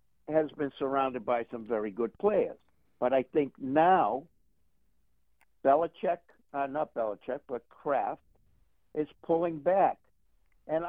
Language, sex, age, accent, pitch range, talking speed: English, male, 60-79, American, 105-160 Hz, 120 wpm